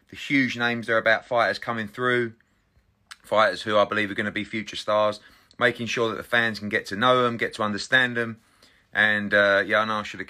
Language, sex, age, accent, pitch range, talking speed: English, male, 30-49, British, 100-120 Hz, 235 wpm